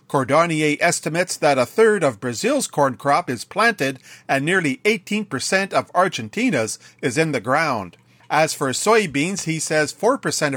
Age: 40-59